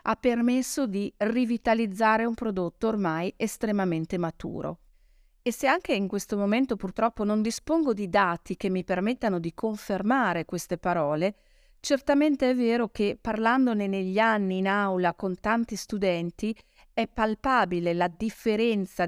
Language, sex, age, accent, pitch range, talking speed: Italian, female, 50-69, native, 185-230 Hz, 135 wpm